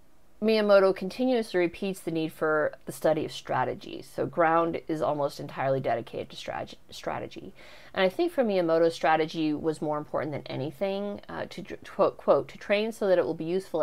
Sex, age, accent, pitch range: female, 30-49, American, 155-200 Hz